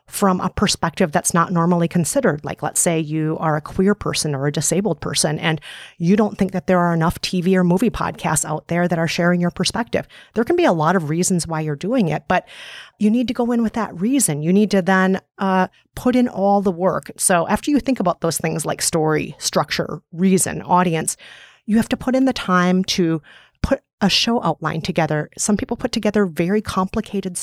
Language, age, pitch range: English, 30-49, 170-215 Hz